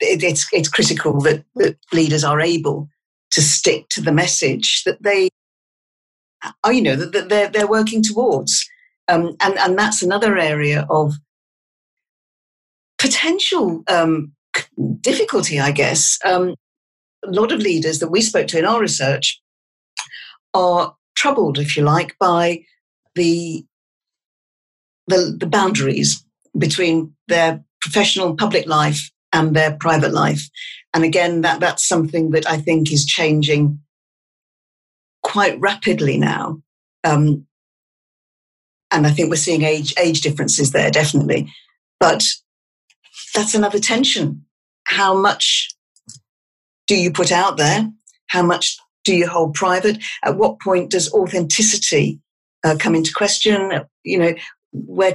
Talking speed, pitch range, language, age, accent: 130 wpm, 150-195 Hz, English, 50-69, British